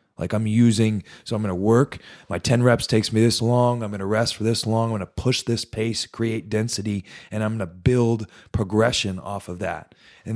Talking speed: 230 wpm